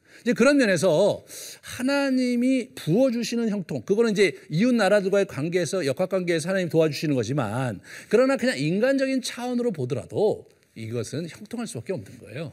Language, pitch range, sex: Korean, 150-250 Hz, male